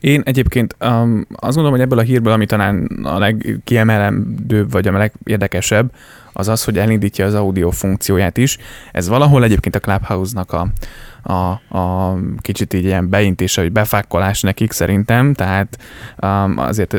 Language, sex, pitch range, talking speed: Hungarian, male, 100-115 Hz, 150 wpm